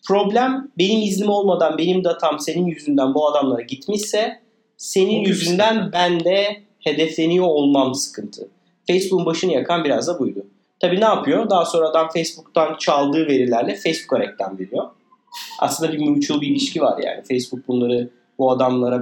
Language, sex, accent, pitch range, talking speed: Turkish, male, native, 145-205 Hz, 145 wpm